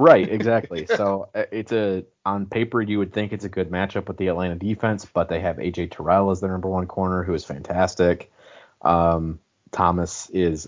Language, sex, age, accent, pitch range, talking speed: English, male, 30-49, American, 85-100 Hz, 190 wpm